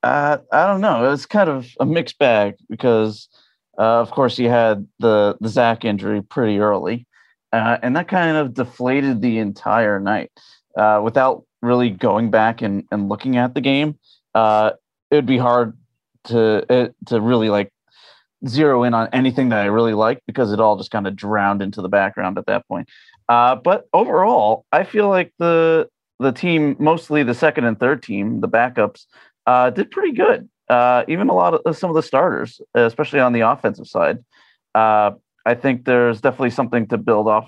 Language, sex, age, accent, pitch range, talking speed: English, male, 30-49, American, 110-130 Hz, 190 wpm